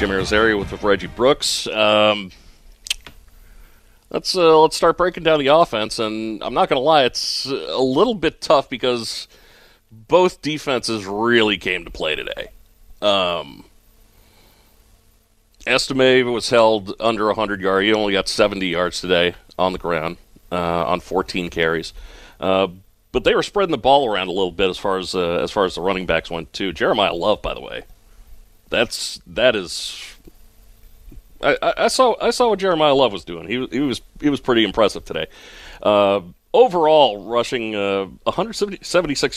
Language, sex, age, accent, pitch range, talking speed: English, male, 40-59, American, 95-135 Hz, 165 wpm